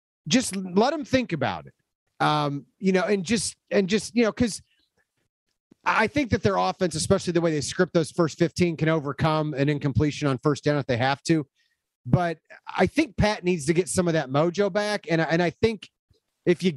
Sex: male